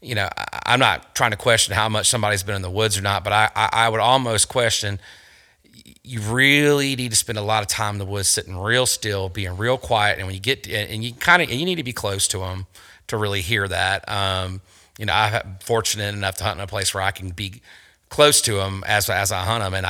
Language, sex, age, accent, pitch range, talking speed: English, male, 30-49, American, 95-110 Hz, 250 wpm